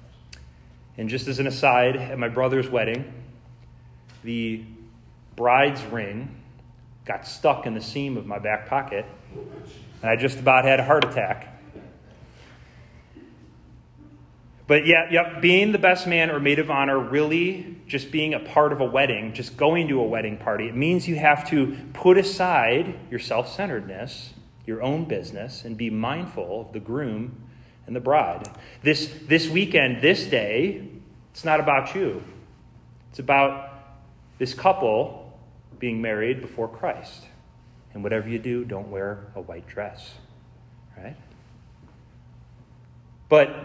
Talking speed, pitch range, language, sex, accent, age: 140 wpm, 110-145 Hz, English, male, American, 30-49